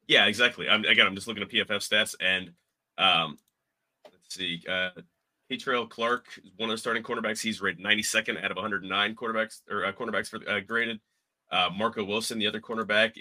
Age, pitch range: 30-49, 90-110 Hz